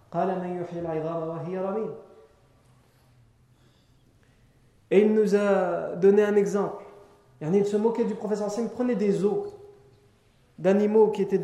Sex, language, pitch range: male, French, 135-210 Hz